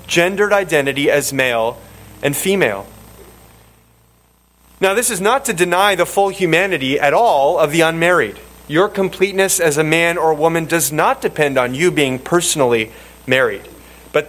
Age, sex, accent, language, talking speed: 30-49, male, American, English, 150 wpm